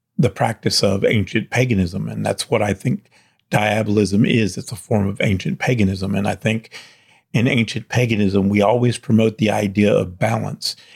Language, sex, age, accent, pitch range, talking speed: English, male, 50-69, American, 105-120 Hz, 165 wpm